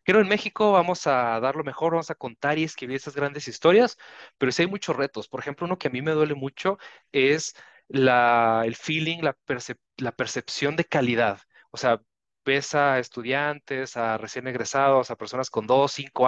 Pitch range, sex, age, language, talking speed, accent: 125-165 Hz, male, 30-49, Spanish, 200 wpm, Mexican